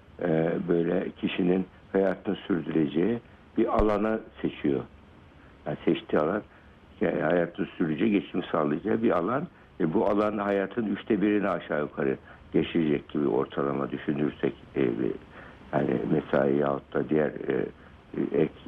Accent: native